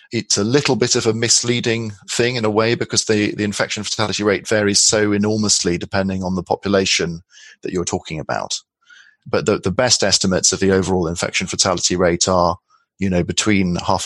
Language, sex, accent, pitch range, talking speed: English, male, British, 90-110 Hz, 190 wpm